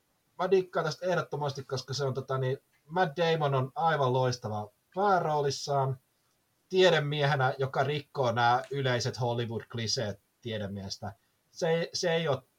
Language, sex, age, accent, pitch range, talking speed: Finnish, male, 30-49, native, 115-145 Hz, 110 wpm